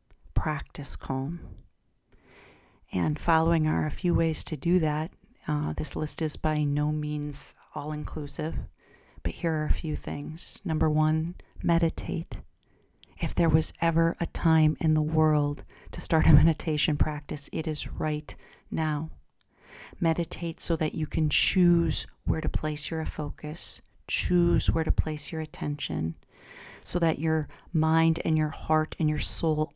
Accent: American